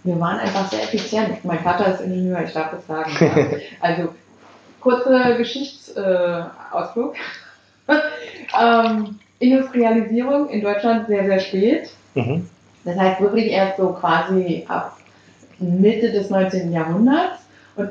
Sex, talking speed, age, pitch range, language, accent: female, 115 wpm, 30-49, 175-225 Hz, German, German